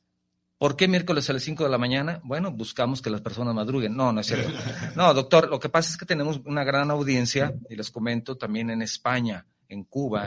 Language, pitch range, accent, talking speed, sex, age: Spanish, 105-130 Hz, Mexican, 220 wpm, male, 40-59